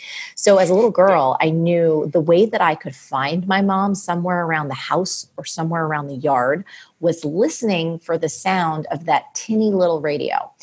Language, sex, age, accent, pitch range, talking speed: English, female, 30-49, American, 150-185 Hz, 190 wpm